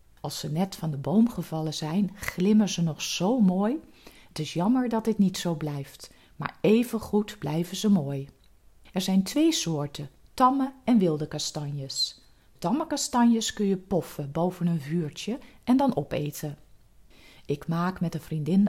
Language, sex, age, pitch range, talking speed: Dutch, female, 40-59, 150-205 Hz, 160 wpm